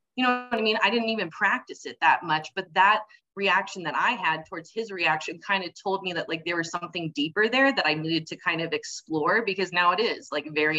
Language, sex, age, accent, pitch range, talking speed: English, female, 20-39, American, 160-200 Hz, 250 wpm